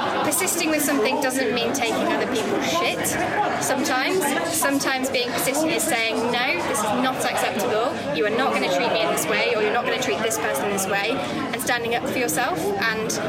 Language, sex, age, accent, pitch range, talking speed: English, female, 10-29, British, 240-290 Hz, 210 wpm